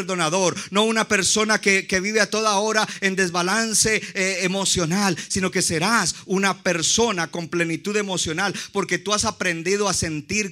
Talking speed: 160 wpm